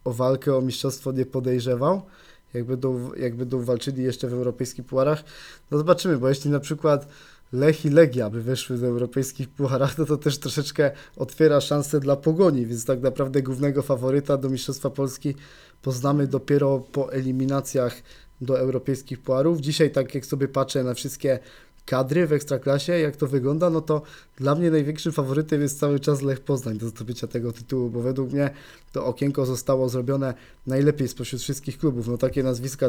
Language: Polish